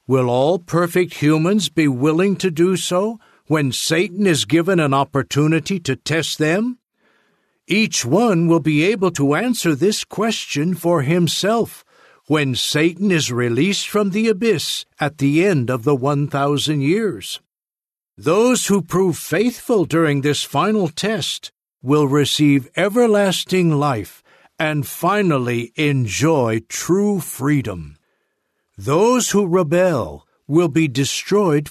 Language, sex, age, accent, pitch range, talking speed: English, male, 60-79, American, 140-185 Hz, 125 wpm